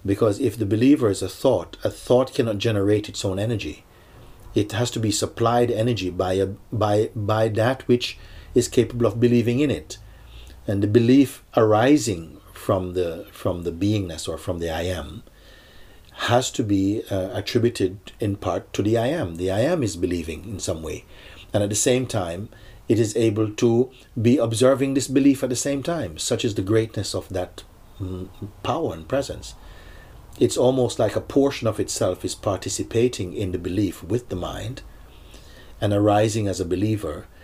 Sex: male